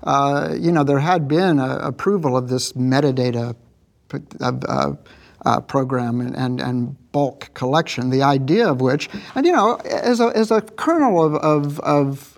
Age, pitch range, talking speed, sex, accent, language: 60-79, 140-205 Hz, 145 wpm, male, American, English